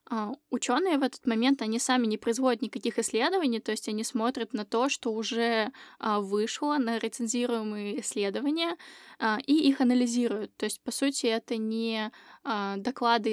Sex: female